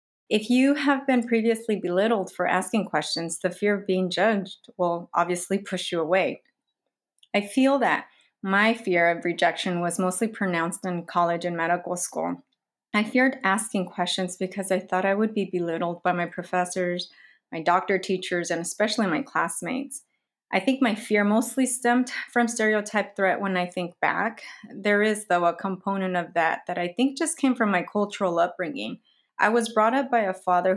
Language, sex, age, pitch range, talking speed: English, female, 30-49, 175-215 Hz, 175 wpm